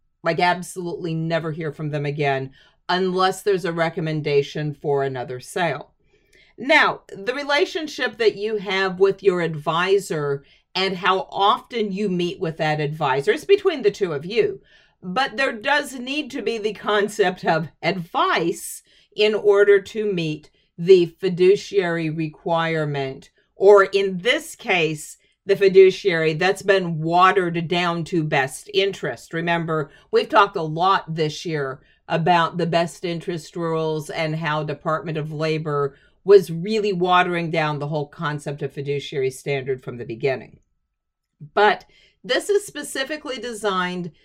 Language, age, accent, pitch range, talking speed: English, 50-69, American, 155-205 Hz, 140 wpm